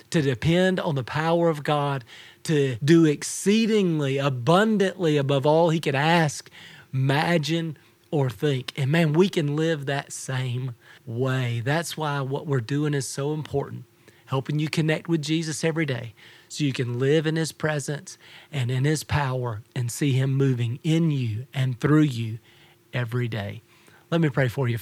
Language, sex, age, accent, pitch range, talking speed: English, male, 40-59, American, 125-155 Hz, 165 wpm